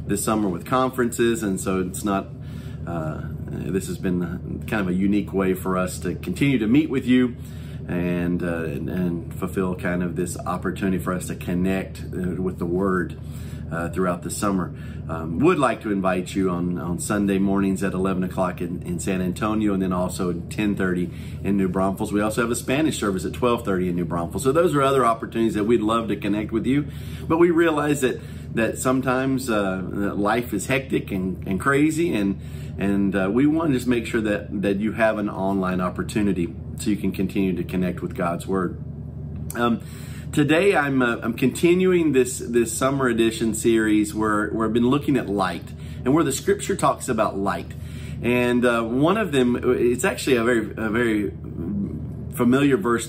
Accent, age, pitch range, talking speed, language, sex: American, 40-59, 90-120 Hz, 190 wpm, English, male